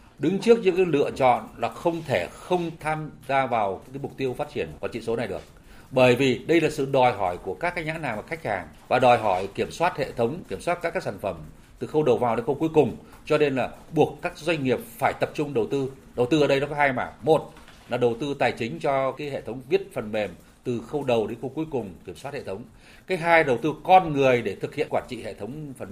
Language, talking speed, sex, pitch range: Vietnamese, 270 wpm, male, 120-160 Hz